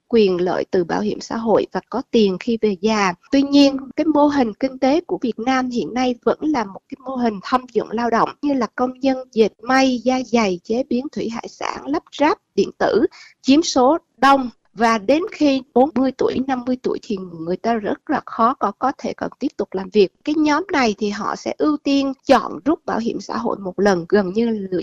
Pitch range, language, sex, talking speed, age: 220-280 Hz, Vietnamese, female, 230 wpm, 20-39